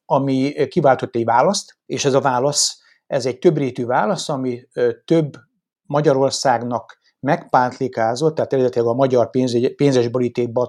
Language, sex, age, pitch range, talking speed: Hungarian, male, 60-79, 125-155 Hz, 135 wpm